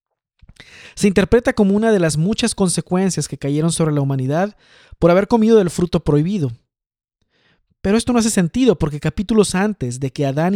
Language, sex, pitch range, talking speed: Spanish, male, 150-185 Hz, 170 wpm